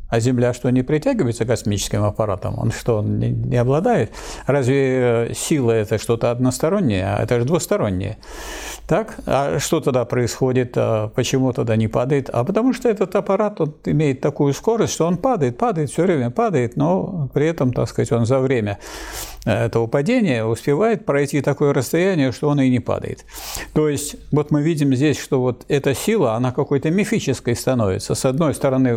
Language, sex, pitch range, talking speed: Russian, male, 115-145 Hz, 170 wpm